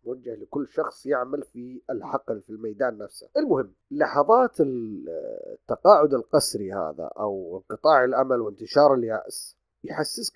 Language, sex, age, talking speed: Arabic, male, 30-49, 115 wpm